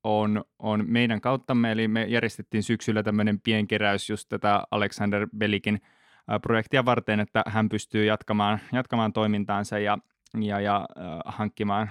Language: Finnish